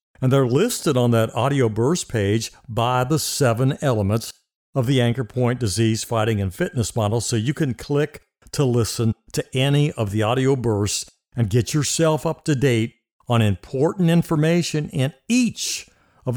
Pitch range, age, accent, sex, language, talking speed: 115-155 Hz, 60-79, American, male, English, 165 wpm